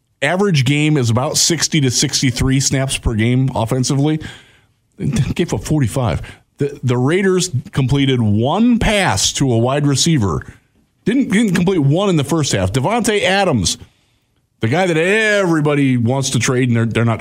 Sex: male